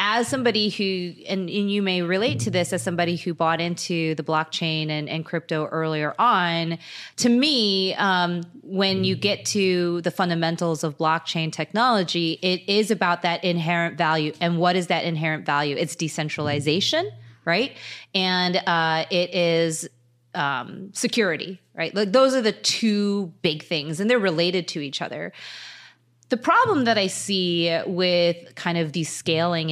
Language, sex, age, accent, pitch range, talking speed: English, female, 30-49, American, 160-190 Hz, 160 wpm